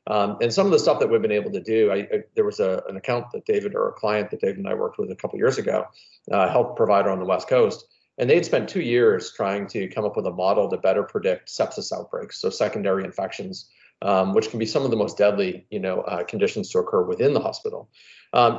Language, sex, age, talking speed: English, male, 40-59, 265 wpm